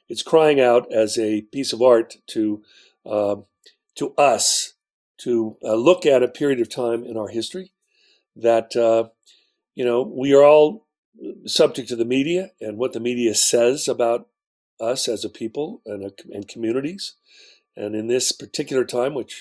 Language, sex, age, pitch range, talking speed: English, male, 50-69, 110-140 Hz, 165 wpm